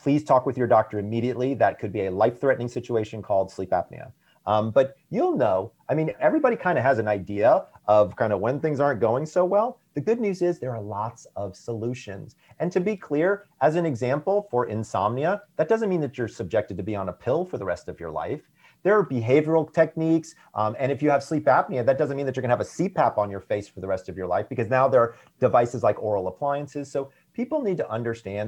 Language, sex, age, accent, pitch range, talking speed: English, male, 40-59, American, 105-165 Hz, 240 wpm